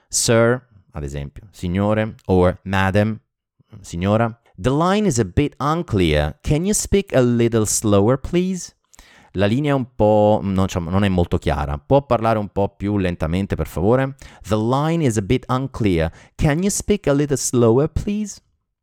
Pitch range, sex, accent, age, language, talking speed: 85-115 Hz, male, native, 30-49, Italian, 165 wpm